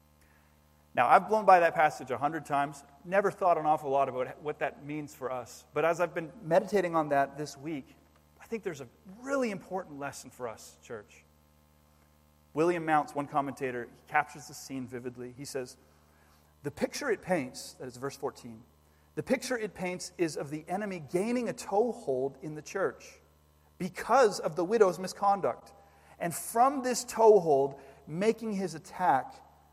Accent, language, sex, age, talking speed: American, English, male, 40-59, 170 wpm